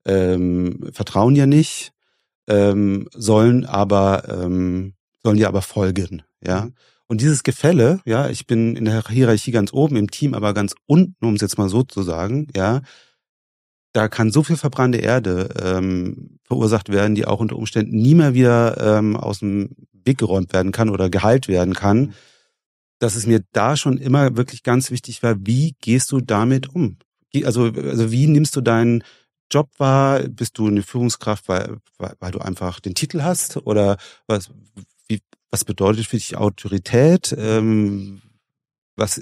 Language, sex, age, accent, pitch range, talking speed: German, male, 30-49, German, 100-130 Hz, 165 wpm